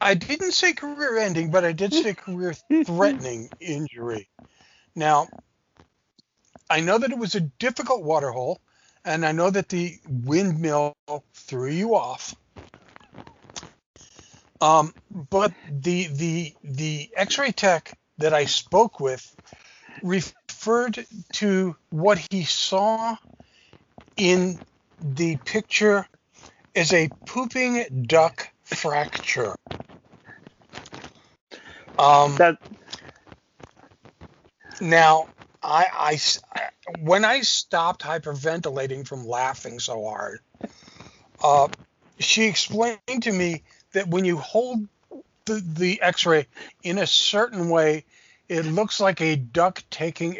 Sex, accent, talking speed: male, American, 105 wpm